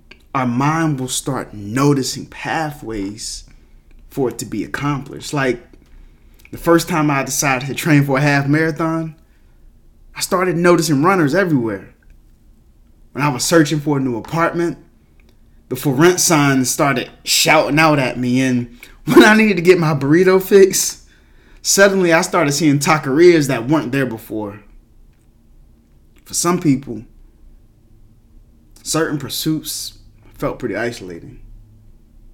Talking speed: 130 wpm